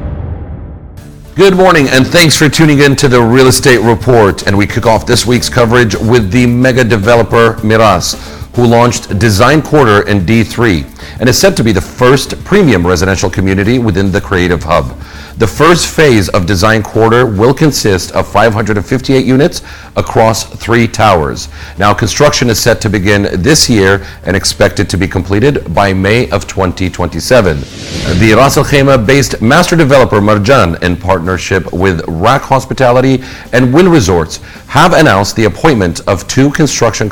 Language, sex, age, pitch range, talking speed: English, male, 40-59, 95-125 Hz, 155 wpm